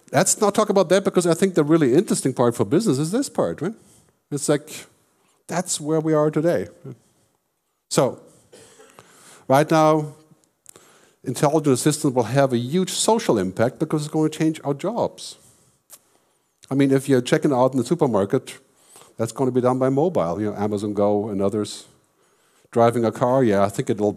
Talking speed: 180 wpm